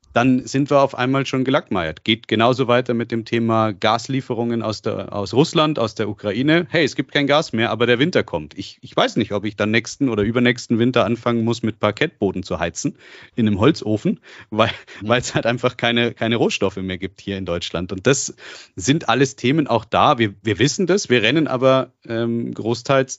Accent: German